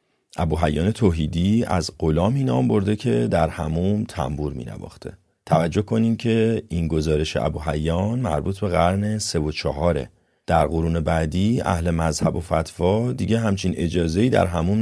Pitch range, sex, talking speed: 85-110 Hz, male, 155 wpm